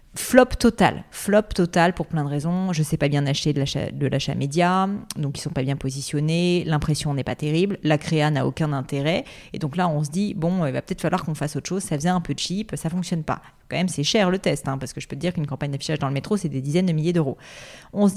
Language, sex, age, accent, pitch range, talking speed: French, female, 30-49, French, 150-195 Hz, 285 wpm